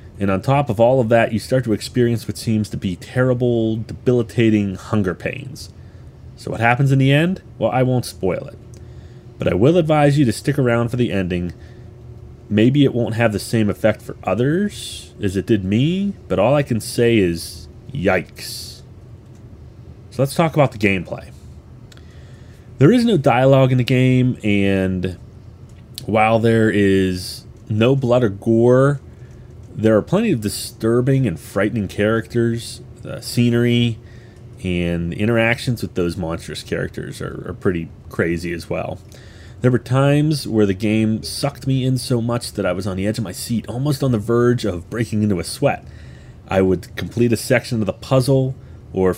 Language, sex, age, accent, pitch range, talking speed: English, male, 30-49, American, 100-125 Hz, 175 wpm